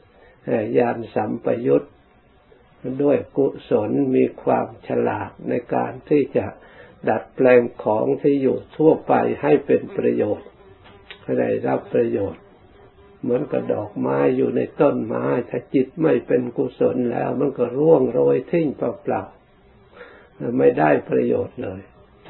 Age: 60-79